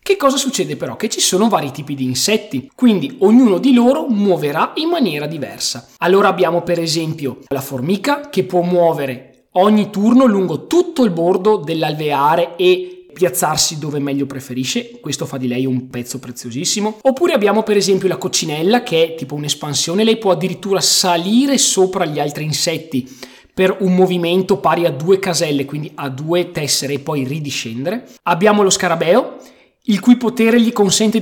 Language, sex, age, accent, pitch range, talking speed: Italian, male, 20-39, native, 155-225 Hz, 165 wpm